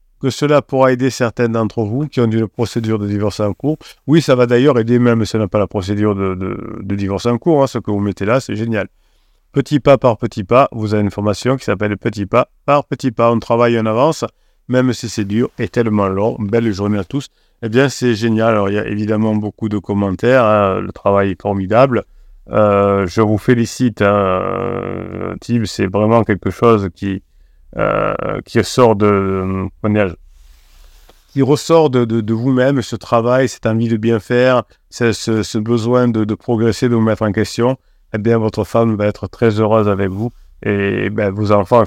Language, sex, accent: French, male, French